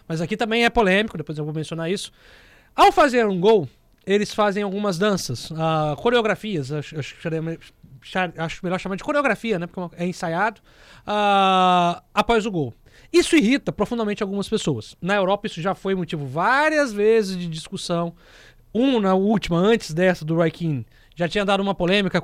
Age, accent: 20-39, Brazilian